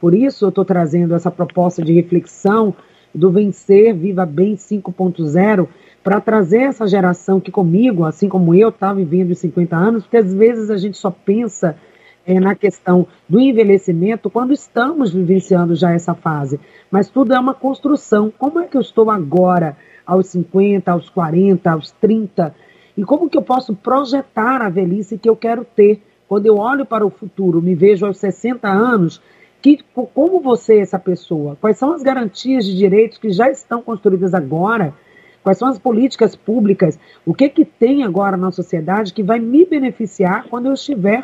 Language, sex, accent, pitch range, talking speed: Portuguese, female, Brazilian, 180-230 Hz, 180 wpm